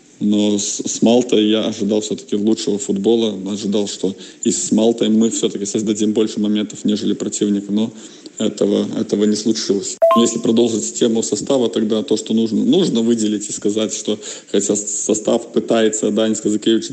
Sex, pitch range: male, 105-115 Hz